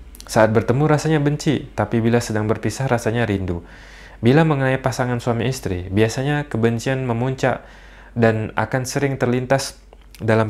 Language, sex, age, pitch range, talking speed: Indonesian, male, 20-39, 100-115 Hz, 130 wpm